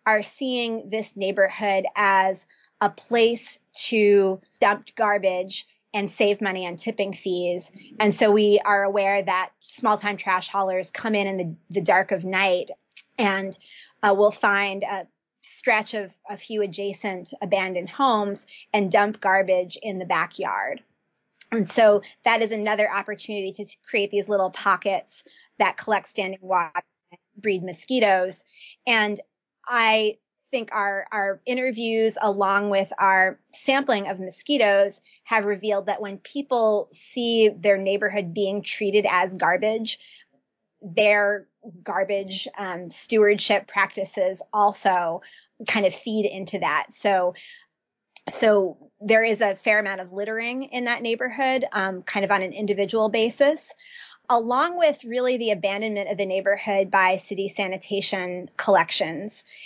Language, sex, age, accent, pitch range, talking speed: English, female, 20-39, American, 195-220 Hz, 135 wpm